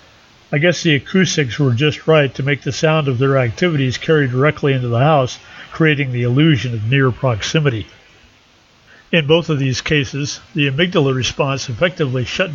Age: 50-69